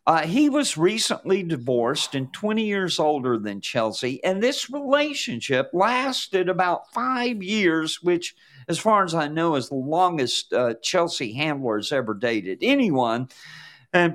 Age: 50-69